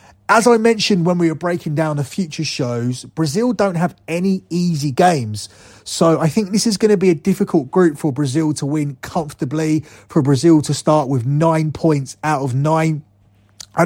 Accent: British